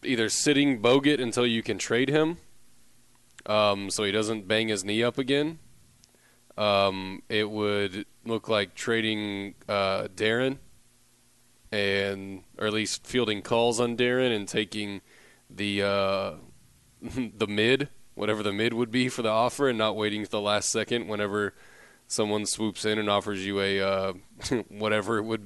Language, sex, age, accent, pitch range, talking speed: English, male, 20-39, American, 100-115 Hz, 155 wpm